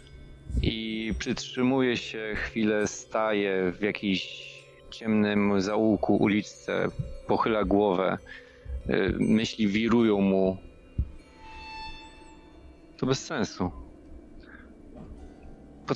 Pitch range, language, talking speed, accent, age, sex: 85-115 Hz, Polish, 70 wpm, native, 30-49, male